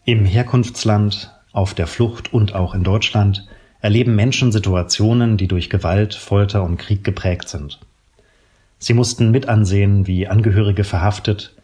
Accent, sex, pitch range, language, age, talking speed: German, male, 95-110 Hz, German, 40-59, 135 wpm